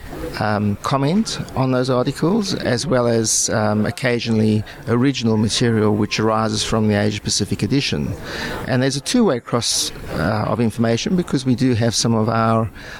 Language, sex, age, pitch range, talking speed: English, male, 50-69, 110-130 Hz, 150 wpm